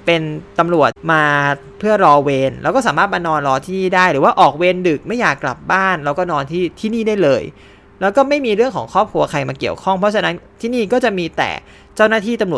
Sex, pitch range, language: male, 140-190 Hz, Thai